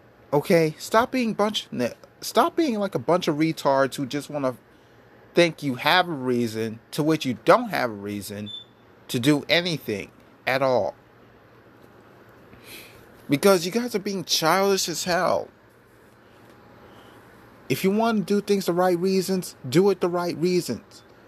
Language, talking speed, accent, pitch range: English, 150 wpm, American, 125-180 Hz